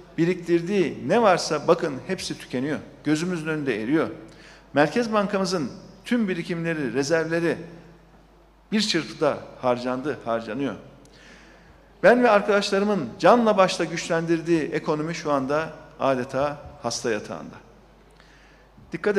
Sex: male